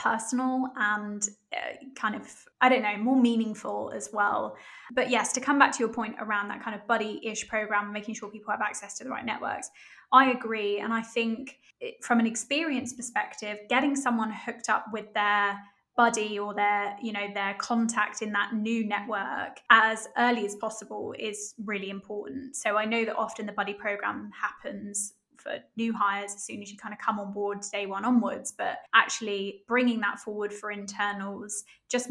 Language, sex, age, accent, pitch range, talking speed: English, female, 10-29, British, 205-240 Hz, 185 wpm